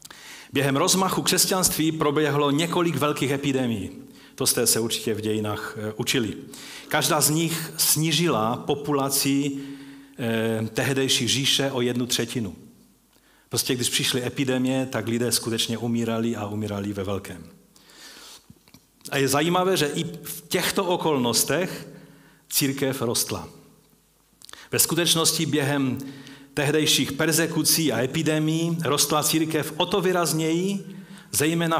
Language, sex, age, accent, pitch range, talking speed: Czech, male, 40-59, native, 115-155 Hz, 110 wpm